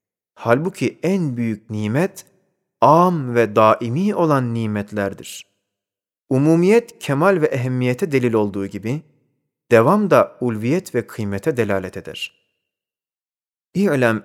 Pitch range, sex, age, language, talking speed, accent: 110-160 Hz, male, 30-49, Turkish, 100 wpm, native